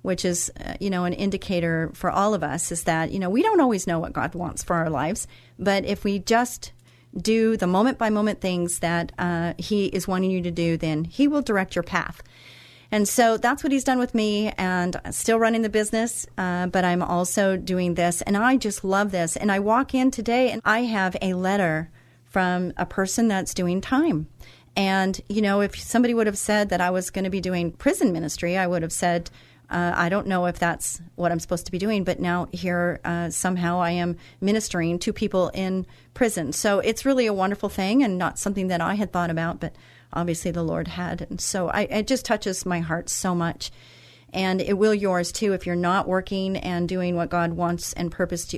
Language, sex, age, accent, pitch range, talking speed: English, female, 40-59, American, 175-205 Hz, 220 wpm